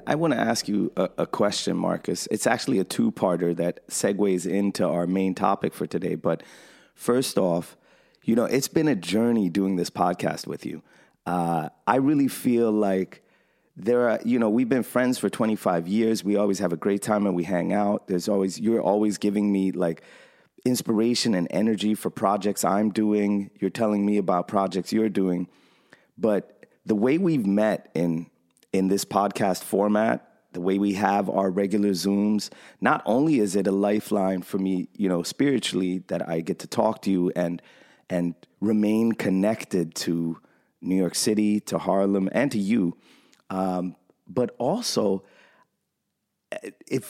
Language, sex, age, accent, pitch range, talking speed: English, male, 30-49, American, 95-110 Hz, 170 wpm